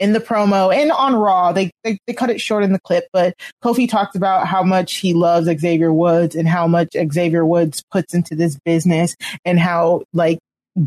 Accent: American